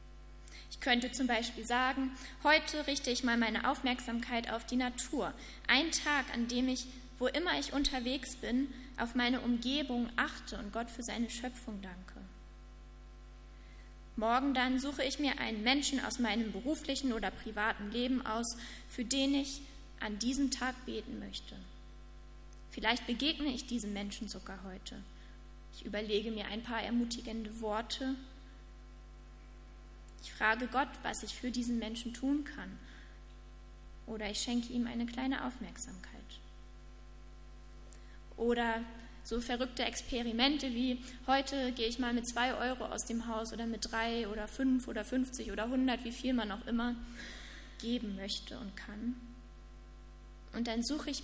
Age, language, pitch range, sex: 20-39, German, 220-260 Hz, female